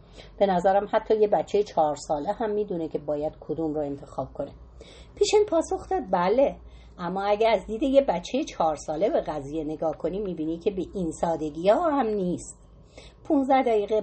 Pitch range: 165-250 Hz